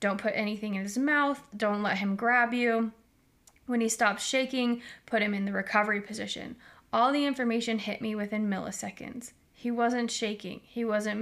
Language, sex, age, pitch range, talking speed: English, female, 20-39, 205-235 Hz, 175 wpm